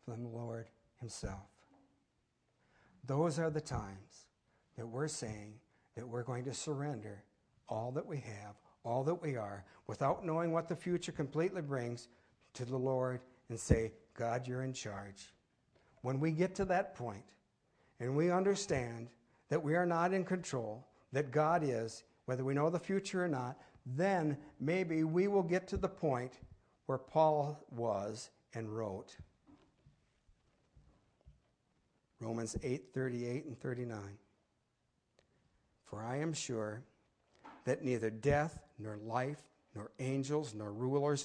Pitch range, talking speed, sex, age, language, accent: 115-155 Hz, 140 wpm, male, 60-79, English, American